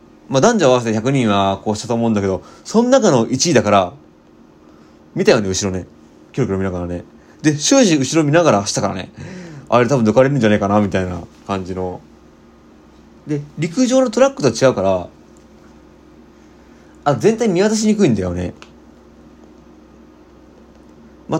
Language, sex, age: Japanese, male, 30-49